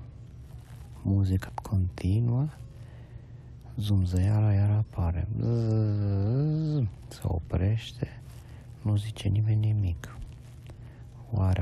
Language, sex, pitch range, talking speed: Romanian, male, 95-120 Hz, 65 wpm